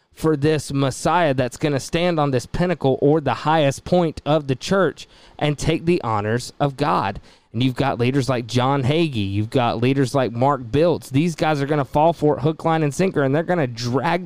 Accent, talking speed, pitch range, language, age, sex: American, 225 wpm, 125-155 Hz, English, 20-39, male